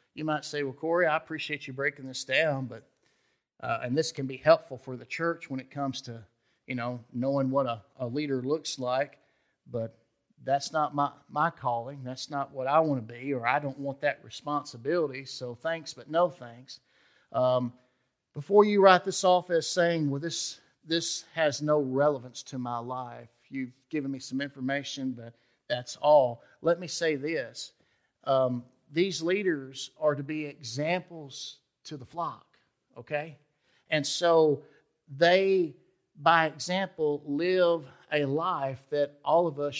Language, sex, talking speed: English, male, 165 wpm